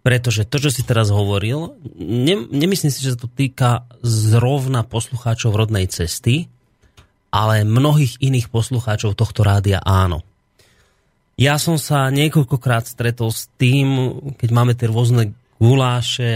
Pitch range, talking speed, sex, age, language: 115-145 Hz, 130 wpm, male, 30-49, Slovak